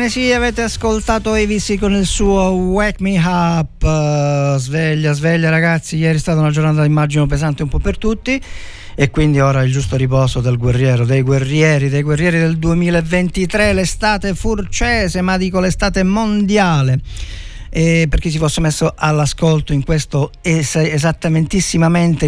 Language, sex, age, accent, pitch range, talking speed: Italian, male, 50-69, native, 125-170 Hz, 150 wpm